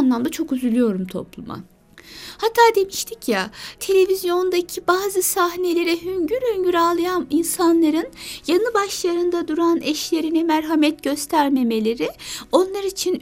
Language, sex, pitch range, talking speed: Turkish, female, 265-350 Hz, 100 wpm